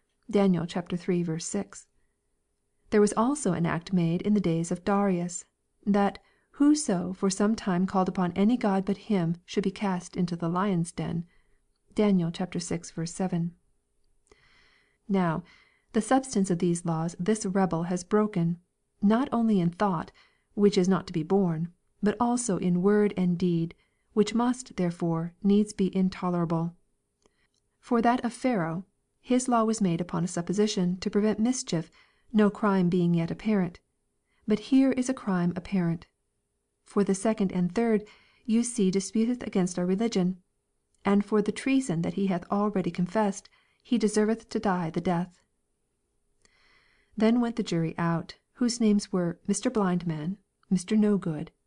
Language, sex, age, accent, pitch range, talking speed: English, female, 40-59, American, 175-210 Hz, 155 wpm